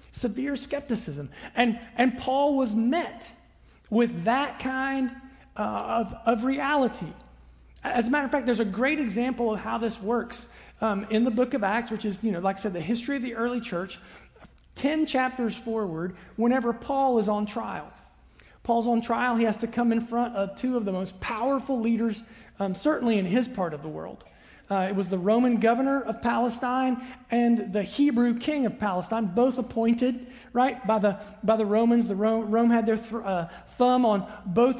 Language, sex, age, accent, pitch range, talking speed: English, male, 40-59, American, 210-250 Hz, 190 wpm